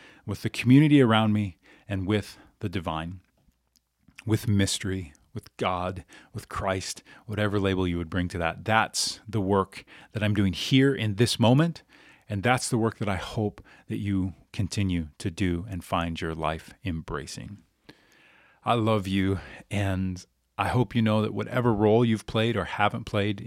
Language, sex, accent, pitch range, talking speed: English, male, American, 90-110 Hz, 165 wpm